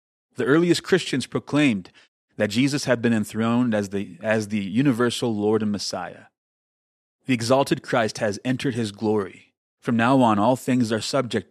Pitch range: 105-125 Hz